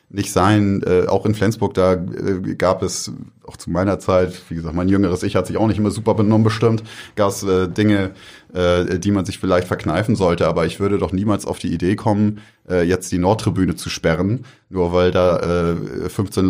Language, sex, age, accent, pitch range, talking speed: German, male, 30-49, German, 85-105 Hz, 210 wpm